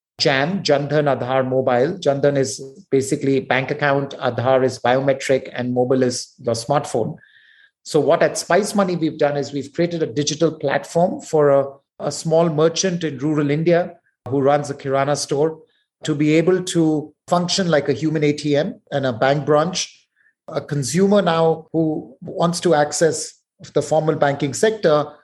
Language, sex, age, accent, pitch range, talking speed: English, male, 30-49, Indian, 140-160 Hz, 160 wpm